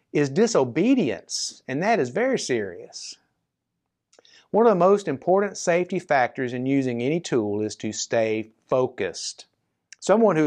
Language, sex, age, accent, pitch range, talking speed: English, male, 50-69, American, 120-175 Hz, 140 wpm